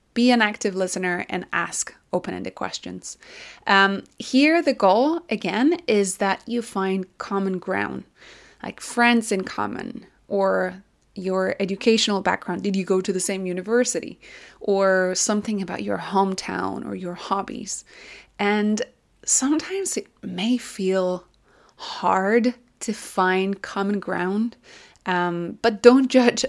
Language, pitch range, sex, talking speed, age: English, 185-240 Hz, female, 130 wpm, 20-39